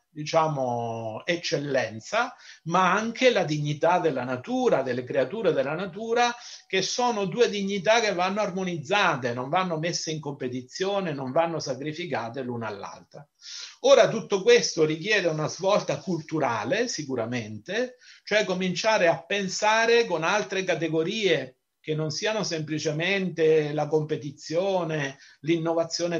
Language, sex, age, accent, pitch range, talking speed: Italian, male, 50-69, native, 155-210 Hz, 115 wpm